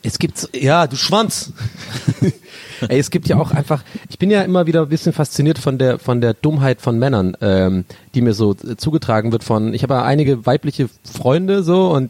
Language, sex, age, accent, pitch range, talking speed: German, male, 30-49, German, 125-165 Hz, 205 wpm